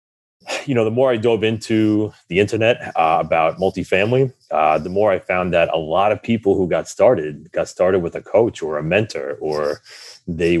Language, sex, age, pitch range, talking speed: English, male, 30-49, 80-110 Hz, 200 wpm